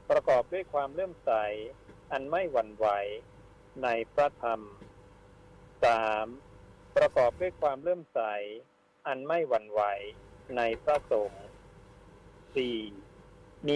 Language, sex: Thai, male